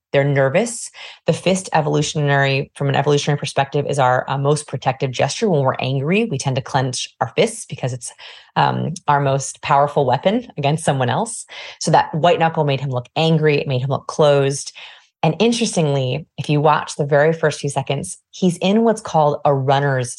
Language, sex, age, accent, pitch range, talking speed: English, female, 30-49, American, 140-180 Hz, 185 wpm